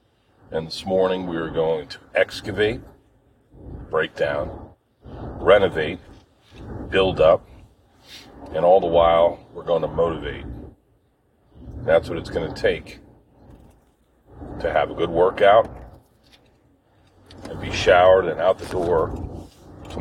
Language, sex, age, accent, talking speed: English, male, 40-59, American, 120 wpm